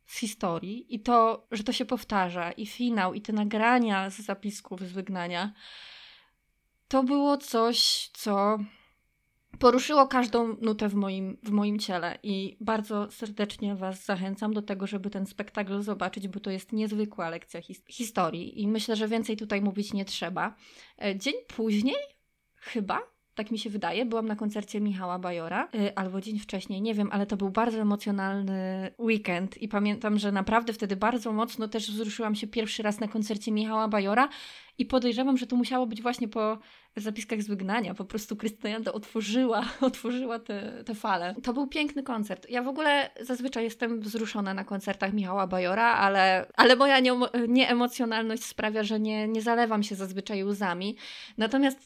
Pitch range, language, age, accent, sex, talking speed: 200-235 Hz, Polish, 20-39, native, female, 160 wpm